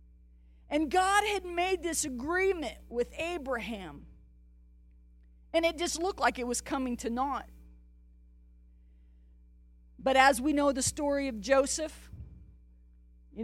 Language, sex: English, female